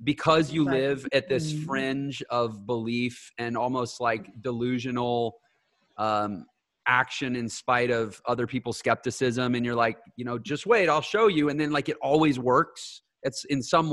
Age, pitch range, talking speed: 30-49, 120-175 Hz, 170 wpm